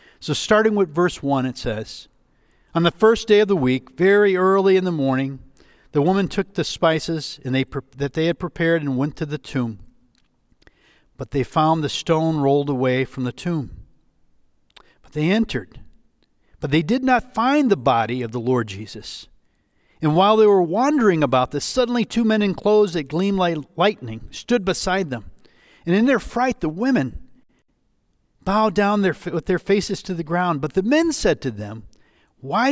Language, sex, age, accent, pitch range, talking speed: English, male, 50-69, American, 135-200 Hz, 185 wpm